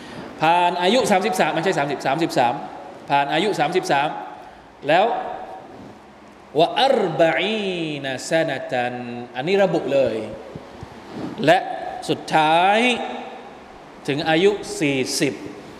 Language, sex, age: Thai, male, 20-39